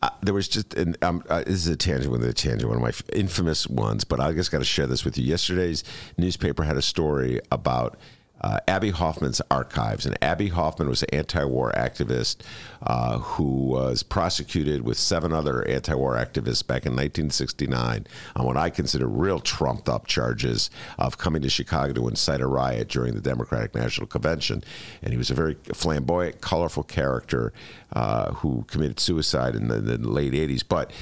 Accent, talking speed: American, 190 wpm